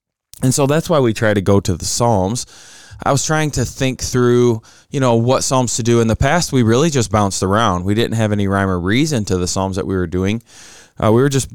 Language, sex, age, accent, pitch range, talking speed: English, male, 20-39, American, 95-120 Hz, 255 wpm